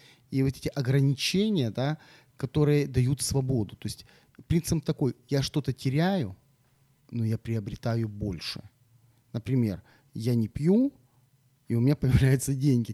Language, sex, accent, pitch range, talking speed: Ukrainian, male, native, 115-145 Hz, 130 wpm